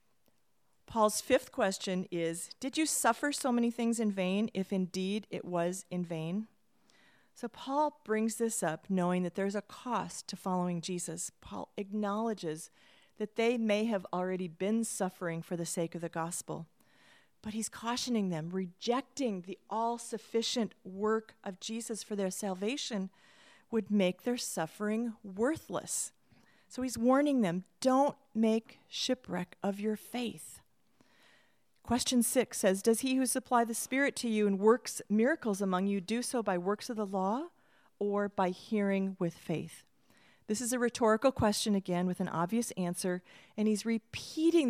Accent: American